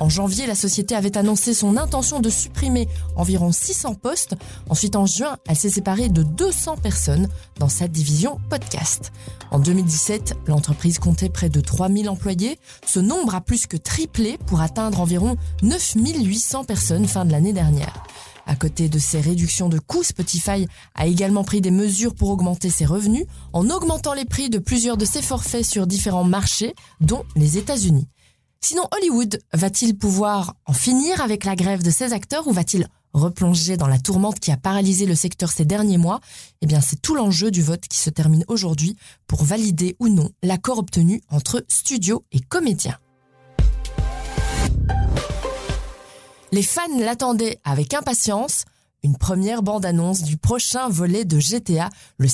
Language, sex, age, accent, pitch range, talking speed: French, female, 20-39, French, 150-215 Hz, 165 wpm